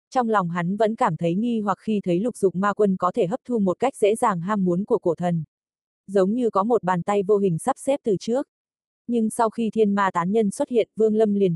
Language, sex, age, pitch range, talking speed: Vietnamese, female, 20-39, 180-220 Hz, 265 wpm